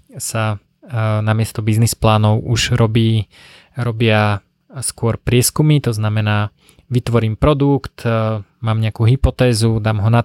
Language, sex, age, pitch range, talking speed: Slovak, male, 20-39, 105-120 Hz, 115 wpm